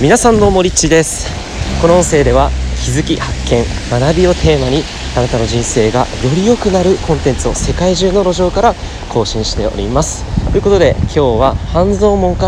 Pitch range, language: 90-135 Hz, Japanese